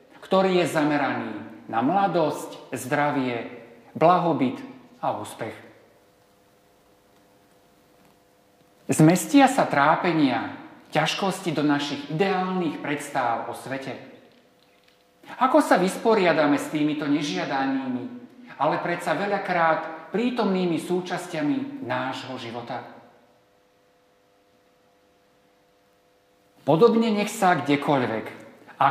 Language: Slovak